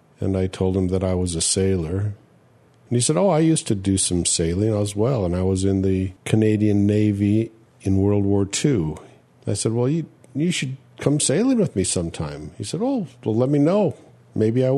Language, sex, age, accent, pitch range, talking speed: English, male, 50-69, American, 100-130 Hz, 210 wpm